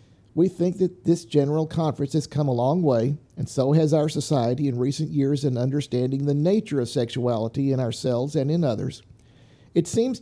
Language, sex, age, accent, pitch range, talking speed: English, male, 50-69, American, 130-155 Hz, 190 wpm